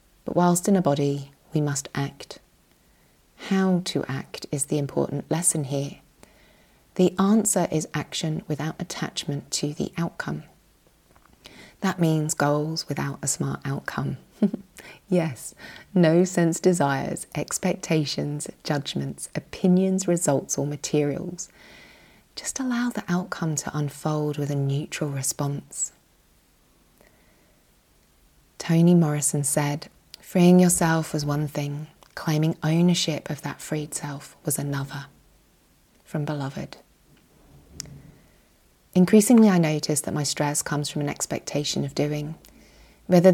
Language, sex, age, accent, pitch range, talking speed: English, female, 30-49, British, 145-175 Hz, 115 wpm